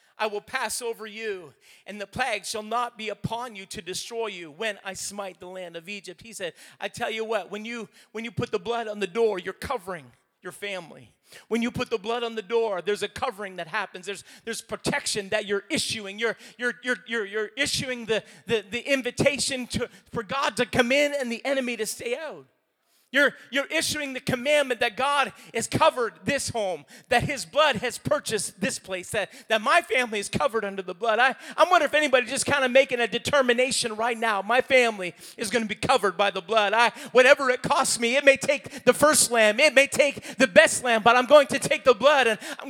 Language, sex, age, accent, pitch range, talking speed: English, male, 40-59, American, 215-275 Hz, 225 wpm